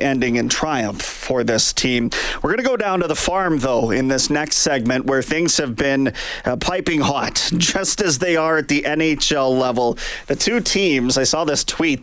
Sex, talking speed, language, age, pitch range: male, 205 wpm, English, 30-49, 135-180 Hz